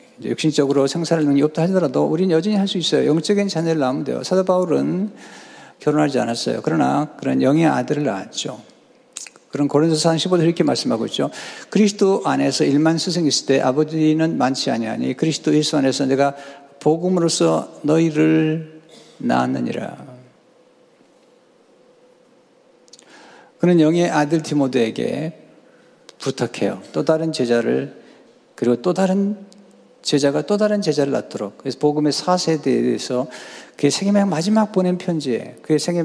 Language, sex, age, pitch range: Korean, male, 50-69, 140-180 Hz